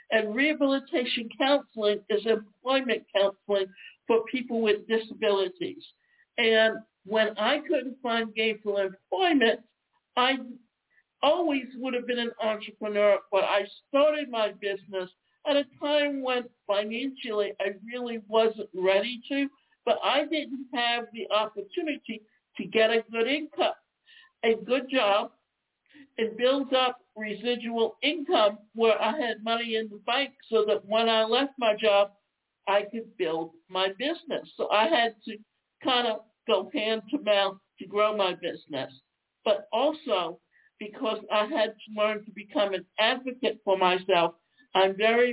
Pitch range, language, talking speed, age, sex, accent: 205-260 Hz, English, 140 wpm, 60-79, male, American